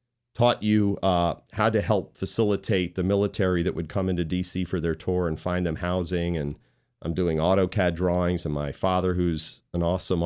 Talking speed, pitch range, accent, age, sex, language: 185 wpm, 90-115 Hz, American, 40-59, male, English